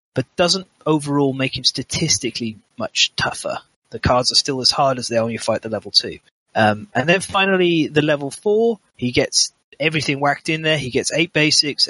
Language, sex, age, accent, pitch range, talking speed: English, male, 30-49, British, 125-160 Hz, 195 wpm